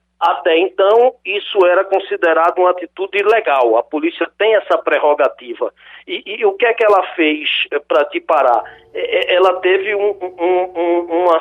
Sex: male